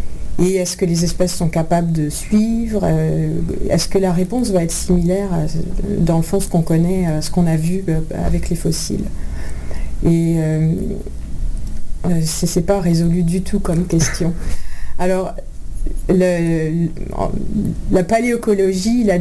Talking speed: 150 wpm